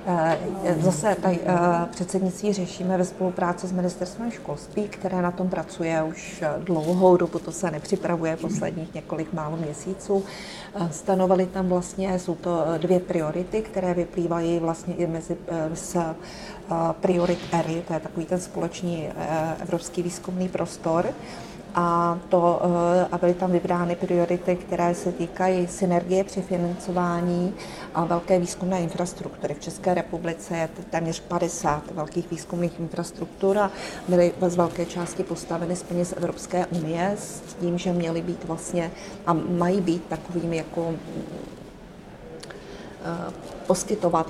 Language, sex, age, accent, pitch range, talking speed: Czech, female, 30-49, native, 170-185 Hz, 130 wpm